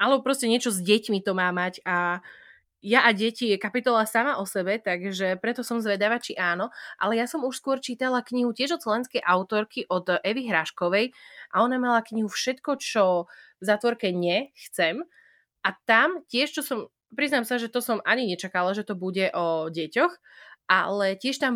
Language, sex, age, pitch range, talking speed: Slovak, female, 20-39, 190-240 Hz, 185 wpm